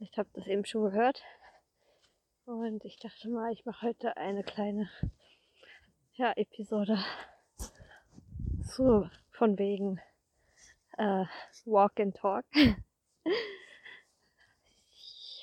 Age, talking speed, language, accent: 20-39, 90 wpm, German, German